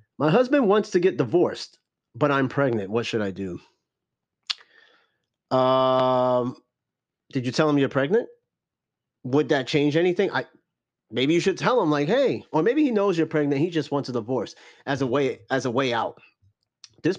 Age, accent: 30-49, American